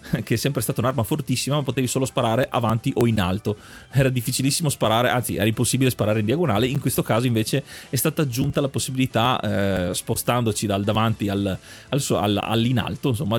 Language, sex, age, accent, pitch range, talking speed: Italian, male, 30-49, native, 110-140 Hz, 190 wpm